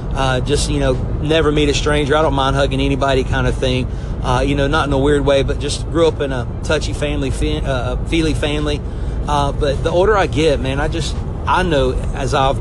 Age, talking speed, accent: 40-59, 235 wpm, American